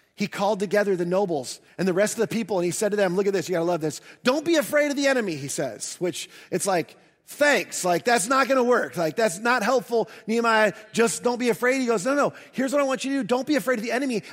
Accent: American